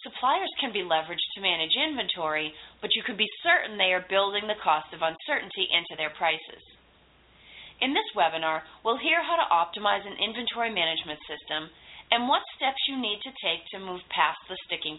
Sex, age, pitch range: female, 30-49, 170-250 Hz